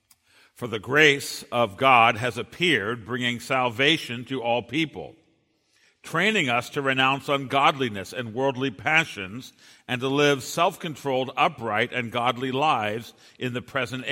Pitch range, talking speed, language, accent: 105-140 Hz, 130 wpm, English, American